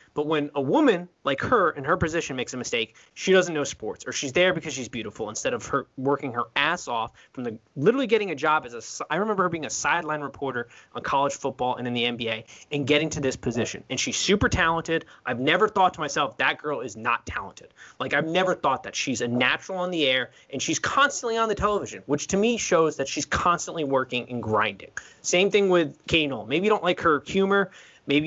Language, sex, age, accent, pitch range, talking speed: English, male, 20-39, American, 135-185 Hz, 230 wpm